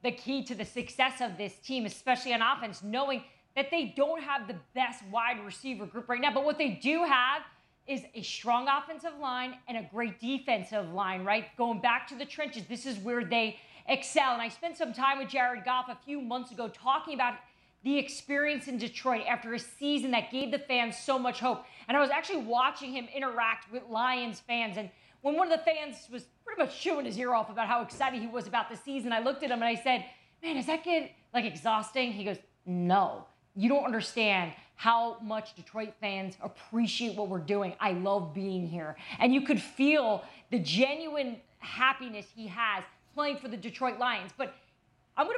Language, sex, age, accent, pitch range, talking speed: English, female, 30-49, American, 225-280 Hz, 205 wpm